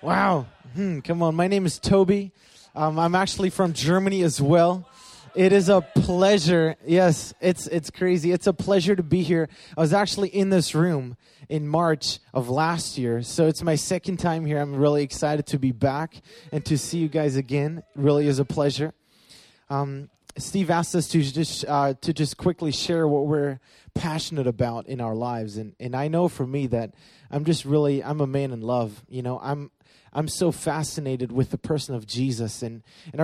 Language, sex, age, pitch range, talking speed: English, male, 20-39, 135-170 Hz, 195 wpm